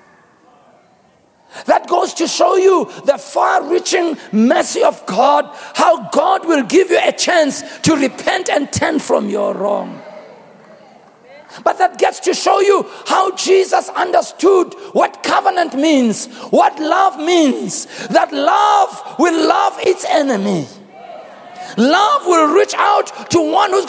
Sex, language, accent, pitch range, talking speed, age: male, English, South African, 250-355 Hz, 130 wpm, 50-69